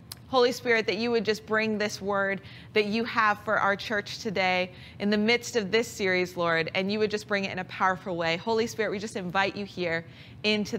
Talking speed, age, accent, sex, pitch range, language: 230 wpm, 30-49, American, female, 195-255 Hz, English